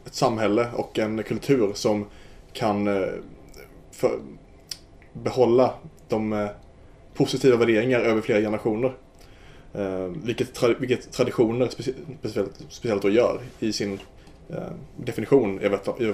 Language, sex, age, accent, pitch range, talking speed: Swedish, male, 20-39, Norwegian, 100-120 Hz, 125 wpm